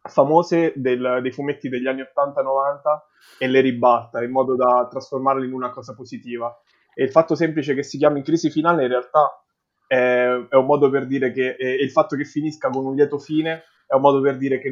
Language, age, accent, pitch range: Italian, 20-39, native, 125-145 Hz